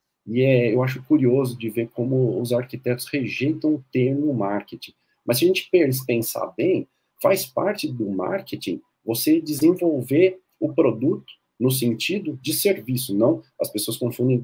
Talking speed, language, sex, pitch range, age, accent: 150 wpm, Portuguese, male, 115-150 Hz, 40-59, Brazilian